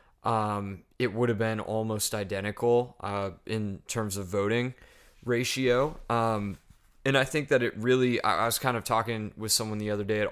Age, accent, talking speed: 20-39, American, 185 wpm